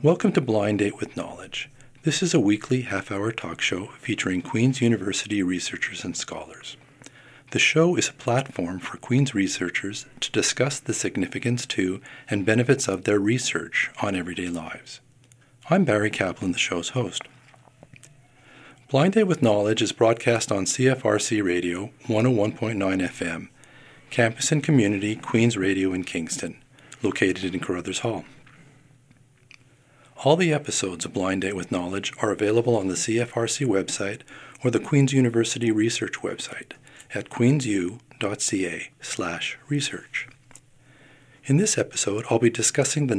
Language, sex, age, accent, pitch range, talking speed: English, male, 40-59, American, 105-135 Hz, 140 wpm